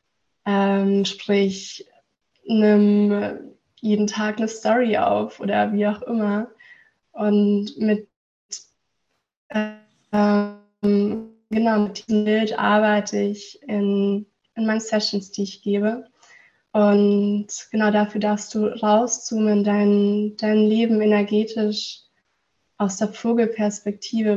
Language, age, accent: German, 20-39, German